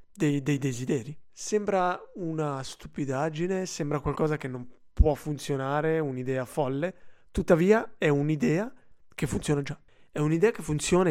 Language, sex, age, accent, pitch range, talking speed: Italian, male, 20-39, native, 135-190 Hz, 130 wpm